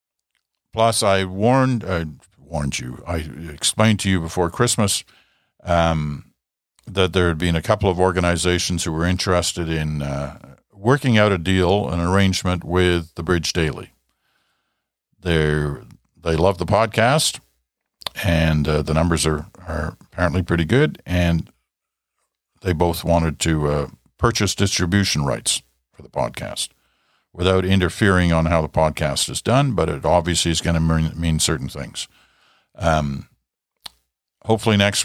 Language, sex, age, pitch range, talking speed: English, male, 50-69, 80-100 Hz, 140 wpm